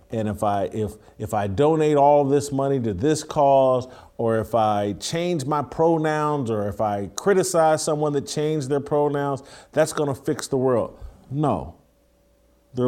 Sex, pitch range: male, 110-145 Hz